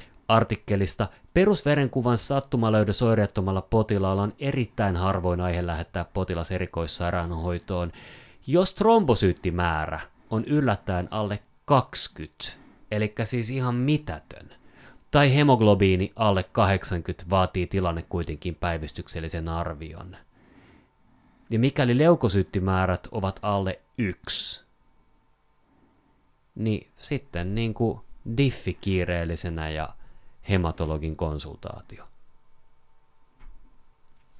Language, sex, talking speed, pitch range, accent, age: Finnish, male, 75 wpm, 85-120 Hz, native, 30-49